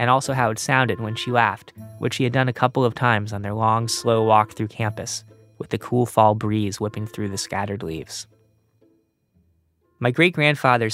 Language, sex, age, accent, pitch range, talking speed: English, male, 20-39, American, 110-130 Hz, 190 wpm